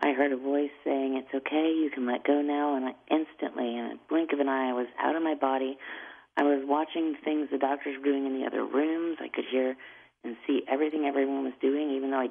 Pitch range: 130-155 Hz